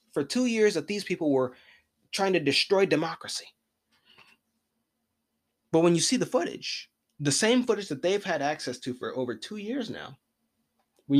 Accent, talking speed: American, 165 wpm